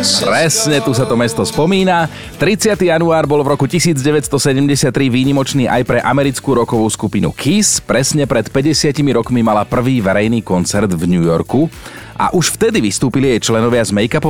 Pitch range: 100-140 Hz